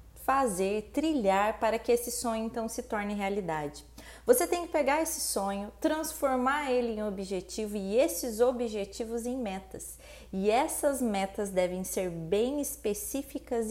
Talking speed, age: 140 wpm, 20-39